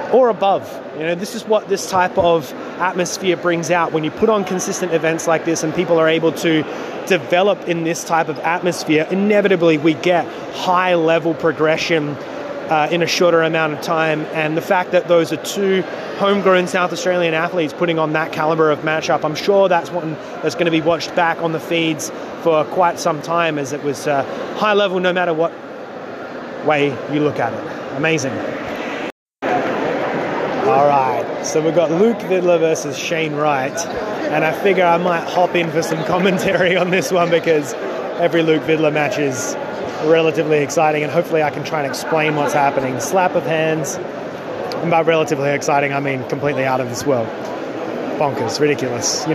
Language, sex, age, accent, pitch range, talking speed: English, male, 30-49, Australian, 155-180 Hz, 180 wpm